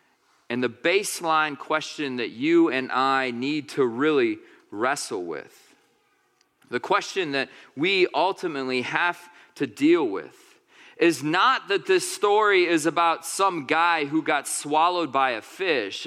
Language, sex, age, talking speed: English, male, 40-59, 140 wpm